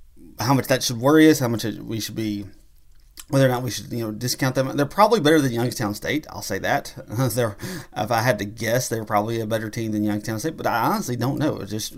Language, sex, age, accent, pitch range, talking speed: English, male, 30-49, American, 105-125 Hz, 250 wpm